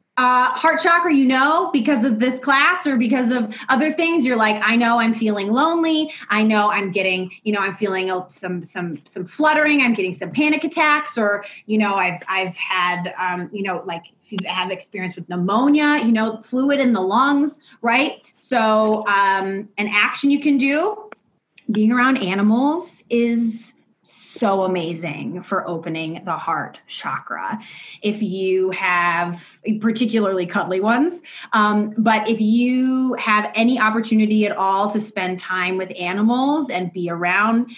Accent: American